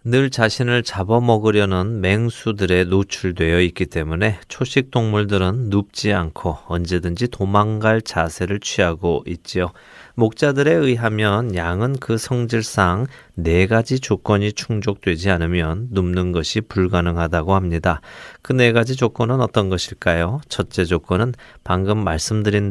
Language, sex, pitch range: Korean, male, 90-115 Hz